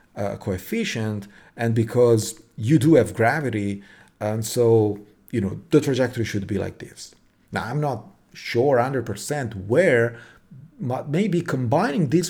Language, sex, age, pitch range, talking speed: English, male, 40-59, 110-150 Hz, 135 wpm